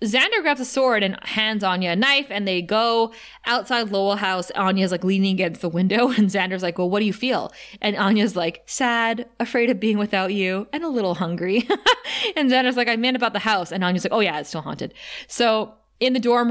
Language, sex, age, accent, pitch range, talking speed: English, female, 20-39, American, 185-235 Hz, 225 wpm